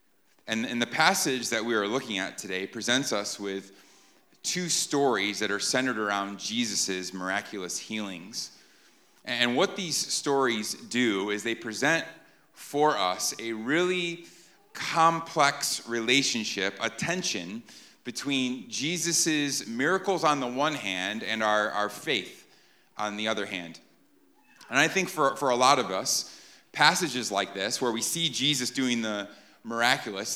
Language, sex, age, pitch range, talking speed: English, male, 30-49, 110-150 Hz, 140 wpm